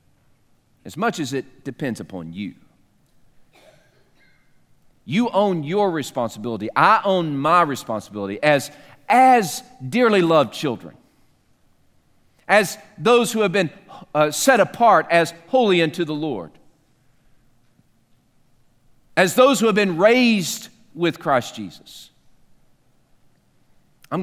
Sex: male